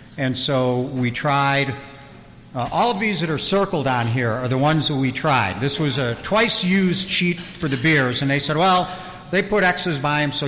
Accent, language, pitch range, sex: American, English, 135-170 Hz, male